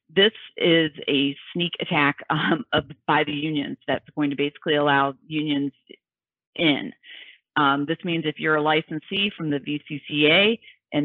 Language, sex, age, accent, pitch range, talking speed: English, female, 40-59, American, 145-170 Hz, 150 wpm